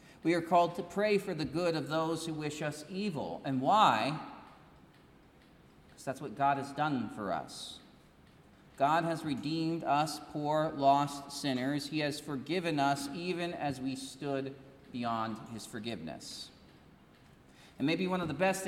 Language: English